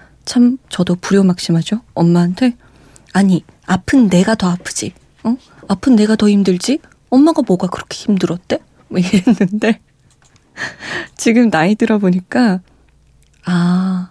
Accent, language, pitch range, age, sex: native, Korean, 180-250 Hz, 20-39, female